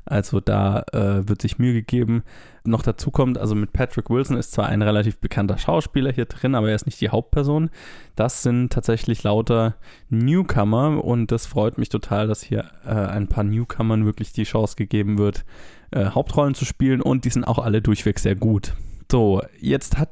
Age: 10-29